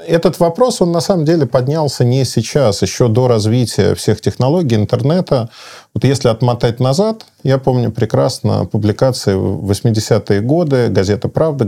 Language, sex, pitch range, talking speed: Russian, male, 110-145 Hz, 145 wpm